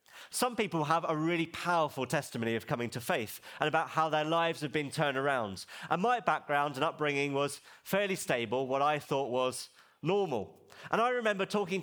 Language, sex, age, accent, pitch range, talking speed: English, male, 30-49, British, 130-185 Hz, 190 wpm